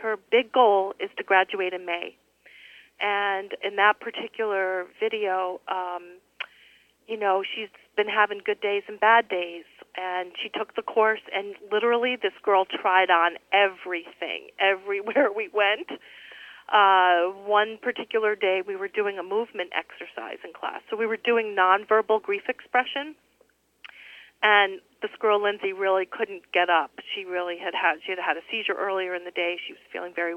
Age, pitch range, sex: 40-59, 190-250 Hz, female